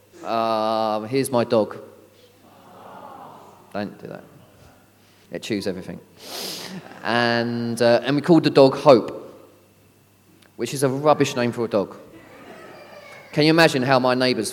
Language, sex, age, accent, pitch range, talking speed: English, male, 30-49, British, 110-145 Hz, 135 wpm